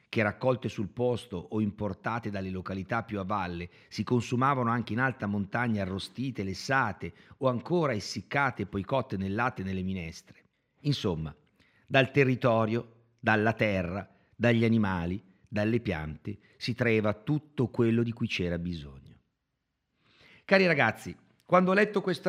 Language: Italian